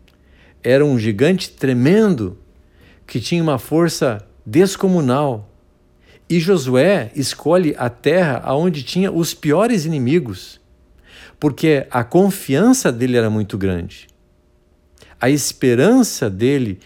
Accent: Brazilian